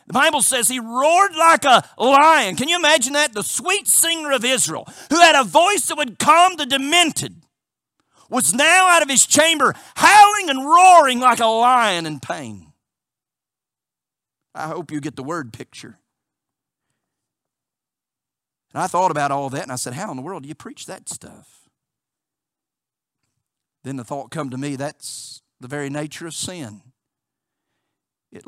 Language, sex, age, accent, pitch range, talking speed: English, male, 50-69, American, 140-235 Hz, 165 wpm